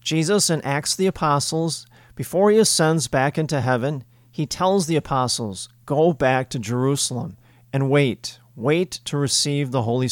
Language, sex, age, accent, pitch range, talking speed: English, male, 40-59, American, 120-155 Hz, 155 wpm